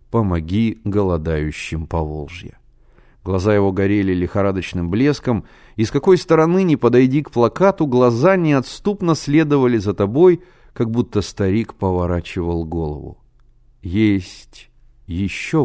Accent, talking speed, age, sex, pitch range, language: native, 110 wpm, 30-49, male, 95-145 Hz, Russian